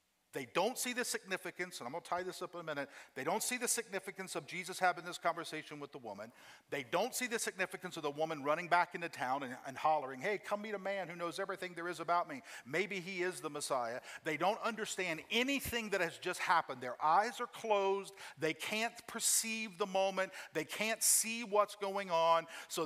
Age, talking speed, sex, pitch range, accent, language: 50-69, 220 wpm, male, 170-215 Hz, American, English